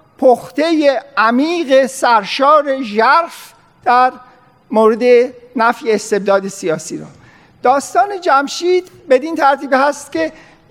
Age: 50-69